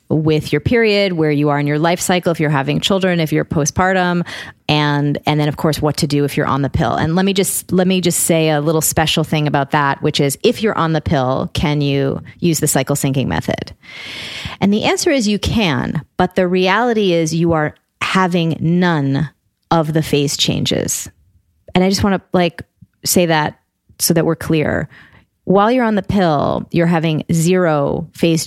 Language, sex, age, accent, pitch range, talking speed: English, female, 30-49, American, 150-185 Hz, 205 wpm